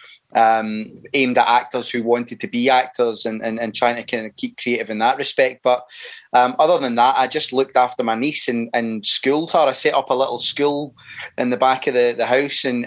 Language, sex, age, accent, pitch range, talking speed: English, male, 20-39, British, 120-140 Hz, 235 wpm